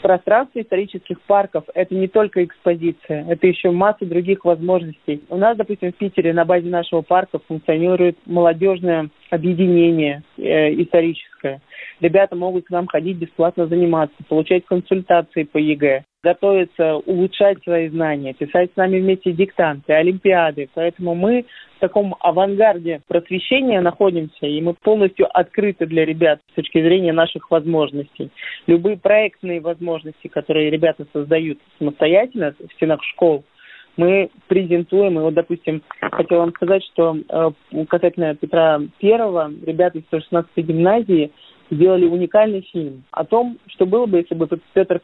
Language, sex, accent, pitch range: Russian, male, native, 160-185 Hz